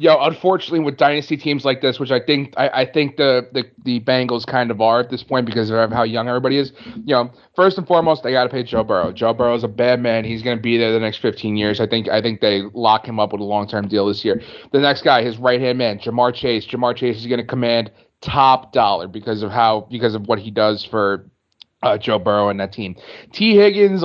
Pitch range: 120-150 Hz